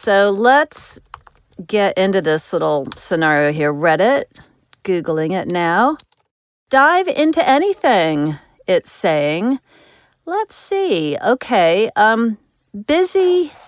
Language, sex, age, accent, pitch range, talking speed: English, female, 40-59, American, 175-255 Hz, 95 wpm